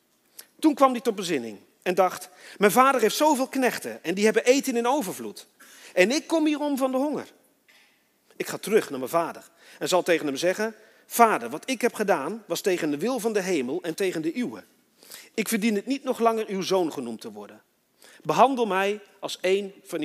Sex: male